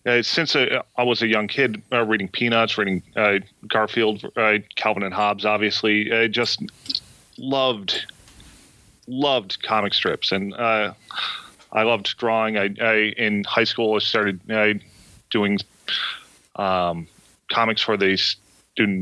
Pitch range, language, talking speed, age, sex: 105-115 Hz, English, 140 wpm, 30-49, male